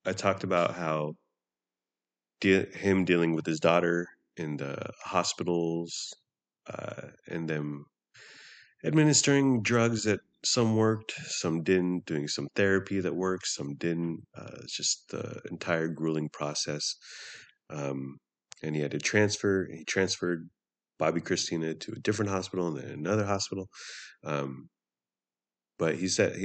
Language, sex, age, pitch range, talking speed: English, male, 30-49, 75-95 Hz, 130 wpm